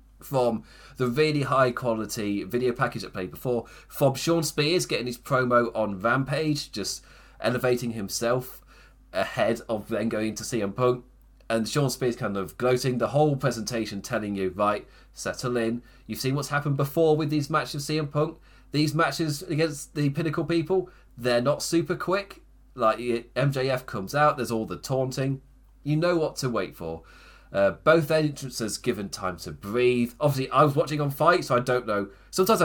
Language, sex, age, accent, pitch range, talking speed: English, male, 30-49, British, 115-150 Hz, 175 wpm